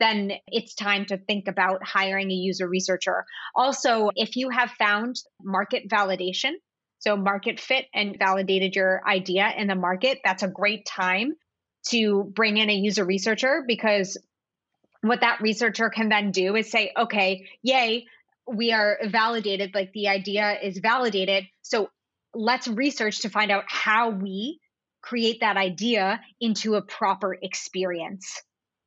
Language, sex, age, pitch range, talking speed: English, female, 20-39, 195-225 Hz, 150 wpm